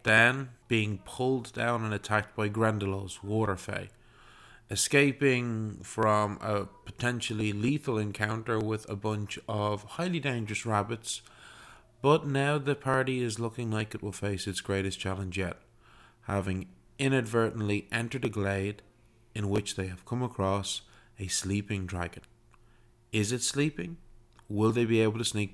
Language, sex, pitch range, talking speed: English, male, 100-120 Hz, 140 wpm